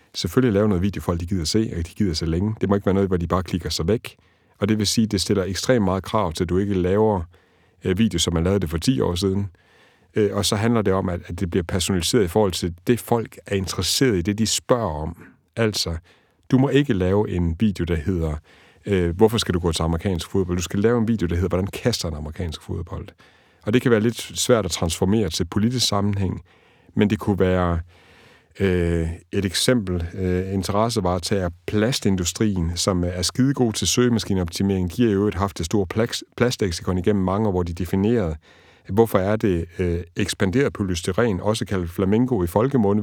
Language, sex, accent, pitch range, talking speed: Danish, male, native, 90-110 Hz, 205 wpm